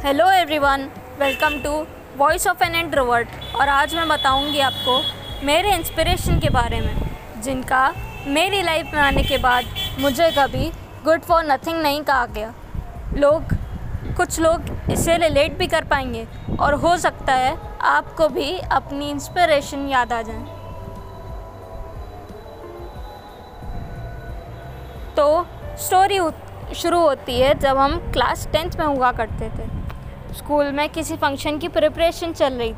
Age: 20-39